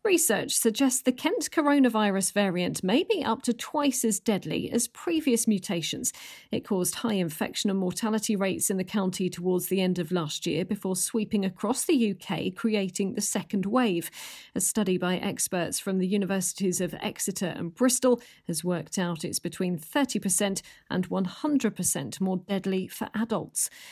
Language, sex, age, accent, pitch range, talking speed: English, female, 40-59, British, 180-225 Hz, 160 wpm